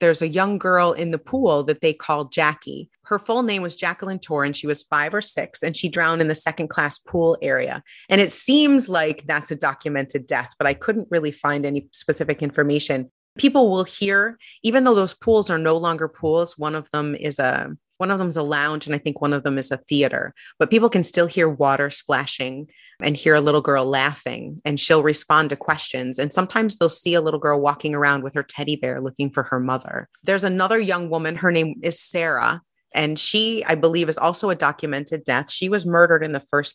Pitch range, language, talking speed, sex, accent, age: 140-170 Hz, English, 225 wpm, female, American, 30-49